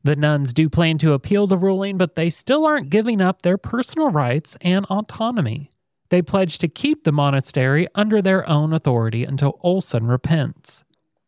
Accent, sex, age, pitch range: American, male, 30-49, 140-185 Hz